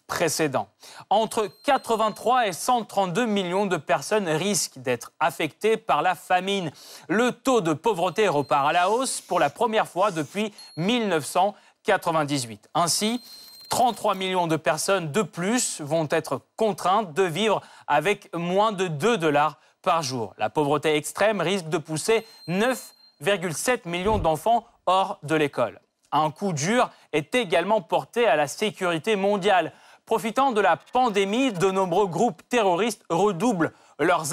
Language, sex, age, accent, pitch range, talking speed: French, male, 30-49, French, 155-220 Hz, 140 wpm